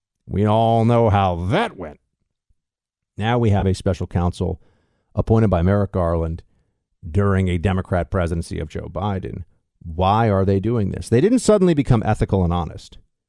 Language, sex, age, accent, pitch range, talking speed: English, male, 50-69, American, 95-125 Hz, 160 wpm